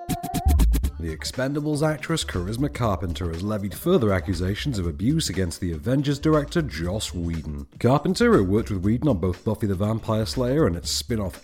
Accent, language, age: British, English, 40-59